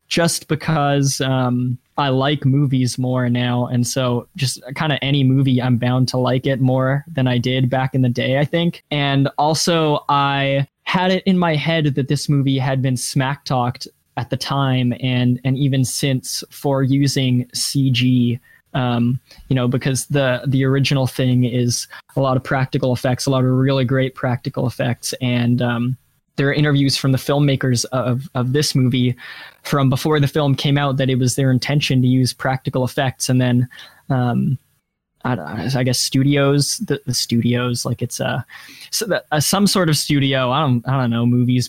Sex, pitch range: male, 125-140 Hz